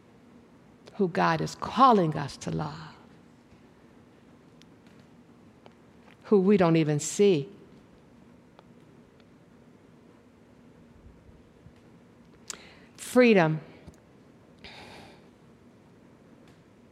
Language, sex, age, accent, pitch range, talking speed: English, female, 60-79, American, 160-230 Hz, 45 wpm